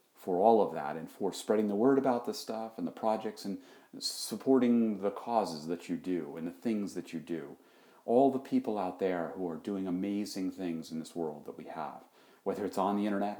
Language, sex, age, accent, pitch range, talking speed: English, male, 40-59, American, 90-110 Hz, 220 wpm